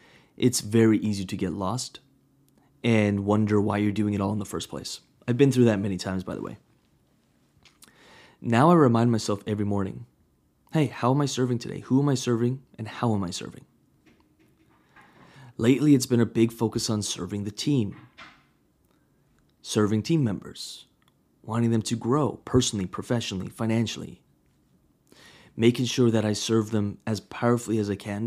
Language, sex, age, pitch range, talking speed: English, male, 20-39, 100-120 Hz, 165 wpm